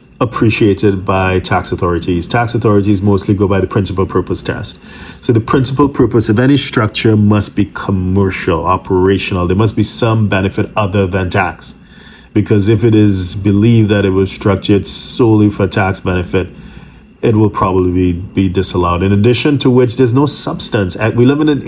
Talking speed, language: 170 wpm, English